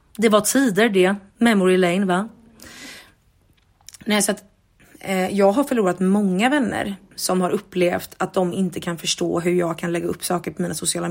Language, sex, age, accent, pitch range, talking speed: Swedish, female, 30-49, native, 175-205 Hz, 180 wpm